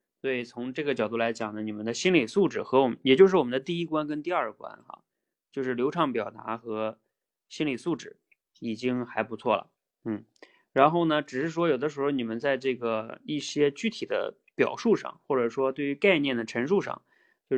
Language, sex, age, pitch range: Chinese, male, 20-39, 120-170 Hz